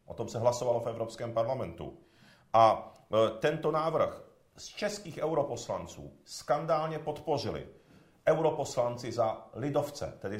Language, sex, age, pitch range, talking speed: Czech, male, 50-69, 115-145 Hz, 110 wpm